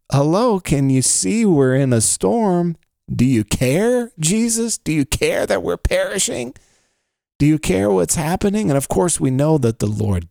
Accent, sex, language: American, male, English